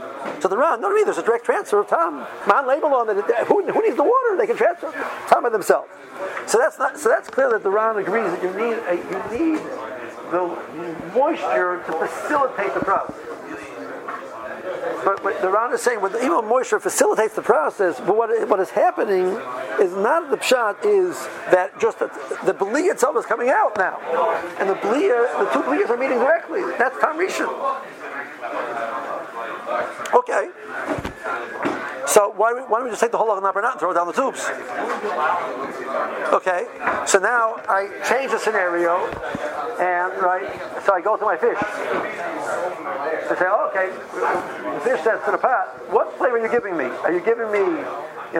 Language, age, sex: English, 50-69, male